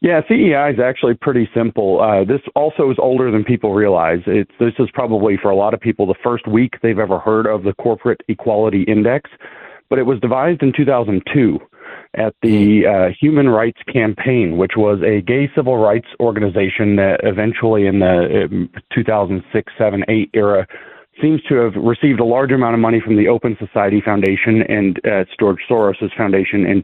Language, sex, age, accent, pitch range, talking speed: English, male, 40-59, American, 105-130 Hz, 180 wpm